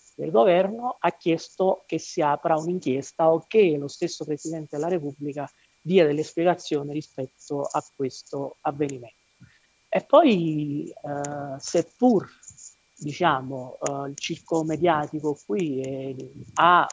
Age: 40-59